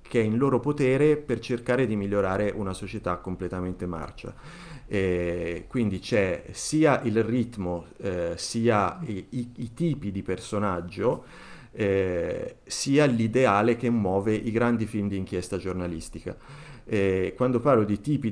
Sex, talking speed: male, 130 wpm